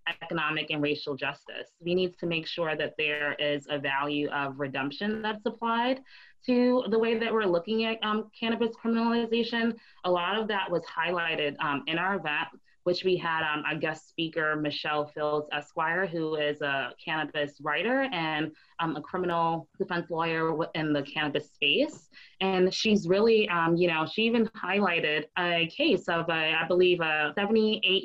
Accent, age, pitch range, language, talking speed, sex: American, 20-39, 155-185 Hz, English, 170 wpm, female